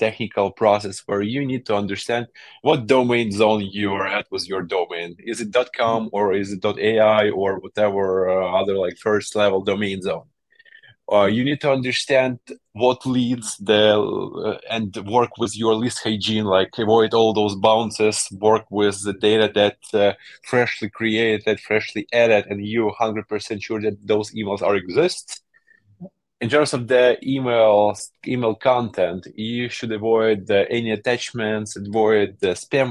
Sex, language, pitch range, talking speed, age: male, English, 100-120 Hz, 160 wpm, 20-39